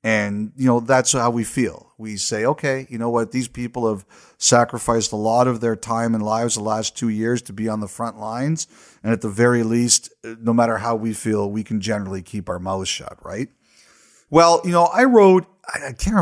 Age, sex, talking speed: 40-59, male, 220 wpm